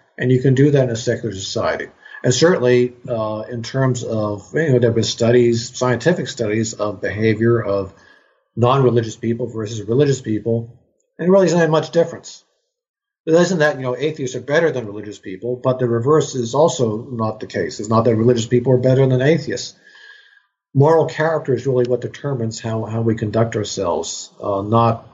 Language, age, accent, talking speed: English, 50-69, American, 190 wpm